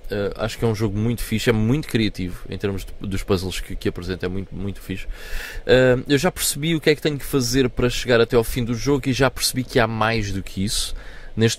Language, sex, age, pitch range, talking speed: Portuguese, male, 20-39, 95-120 Hz, 250 wpm